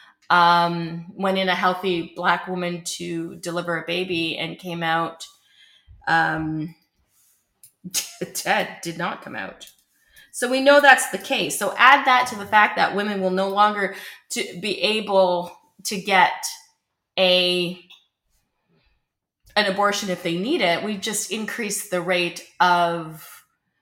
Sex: female